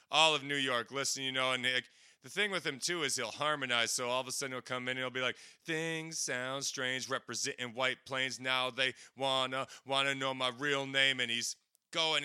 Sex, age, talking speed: male, 30-49, 230 wpm